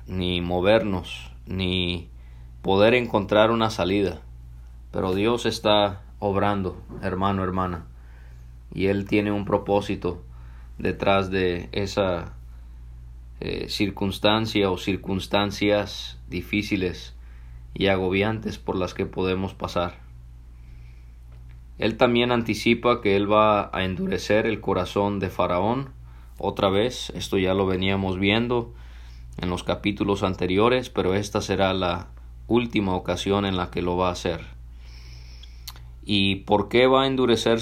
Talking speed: 120 wpm